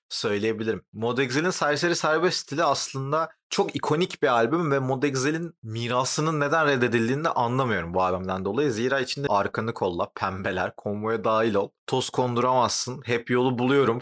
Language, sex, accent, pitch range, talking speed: Turkish, male, native, 100-135 Hz, 140 wpm